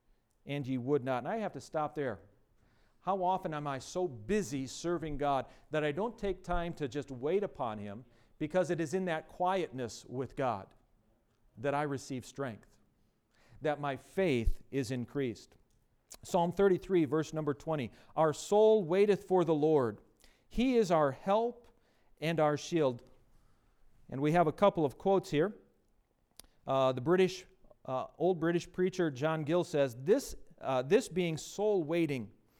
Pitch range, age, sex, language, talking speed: 125-180 Hz, 40-59, male, English, 160 wpm